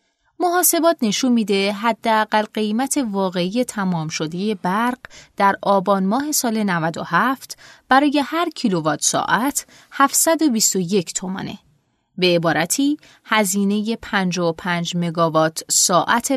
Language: Persian